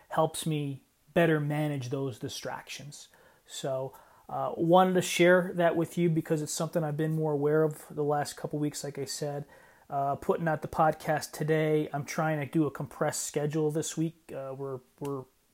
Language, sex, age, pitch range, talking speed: English, male, 30-49, 135-155 Hz, 190 wpm